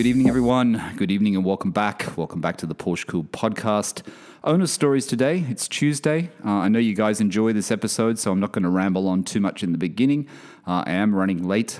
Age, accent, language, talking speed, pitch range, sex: 30-49, Australian, English, 230 wpm, 90-120 Hz, male